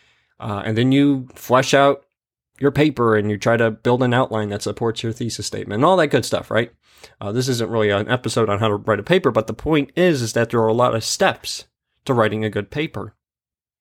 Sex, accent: male, American